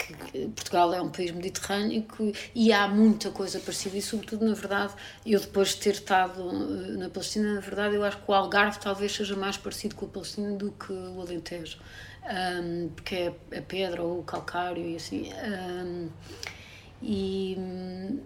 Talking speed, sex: 170 wpm, female